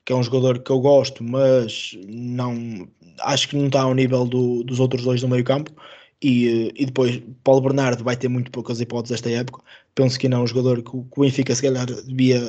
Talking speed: 215 wpm